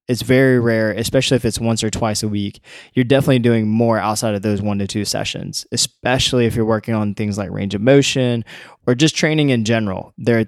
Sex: male